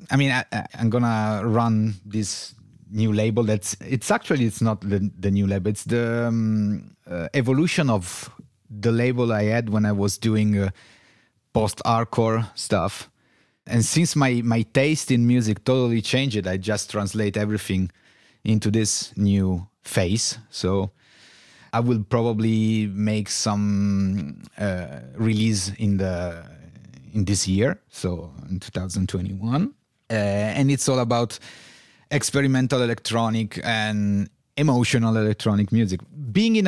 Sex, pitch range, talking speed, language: male, 100-120 Hz, 135 wpm, English